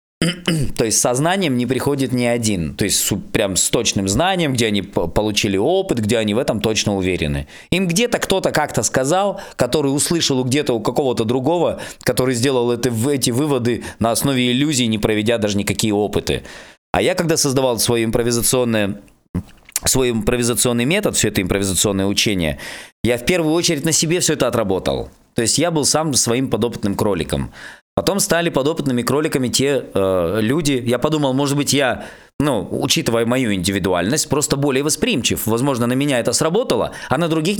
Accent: native